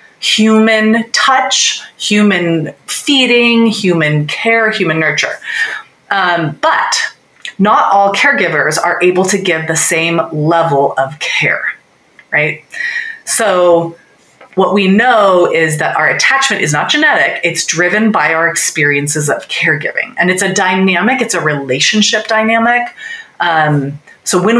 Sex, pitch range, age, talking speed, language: female, 160-215 Hz, 30-49, 125 wpm, English